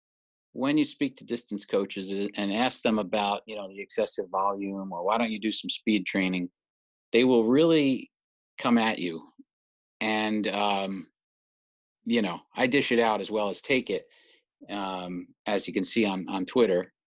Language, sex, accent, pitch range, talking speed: English, male, American, 100-115 Hz, 175 wpm